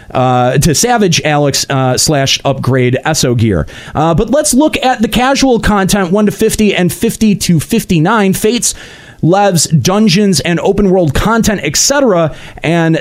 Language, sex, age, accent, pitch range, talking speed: English, male, 30-49, American, 145-220 Hz, 150 wpm